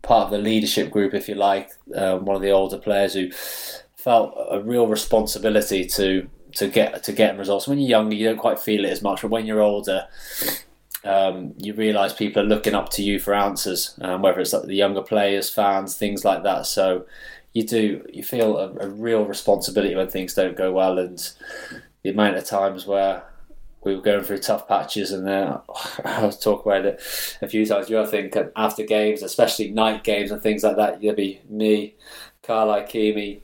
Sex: male